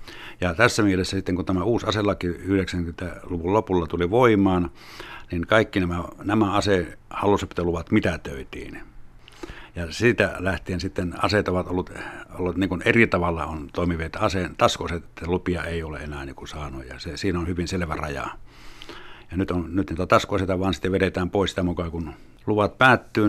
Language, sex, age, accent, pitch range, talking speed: Finnish, male, 60-79, native, 85-100 Hz, 160 wpm